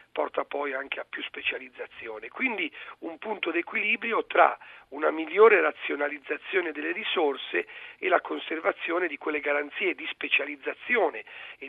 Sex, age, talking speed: male, 40-59, 130 wpm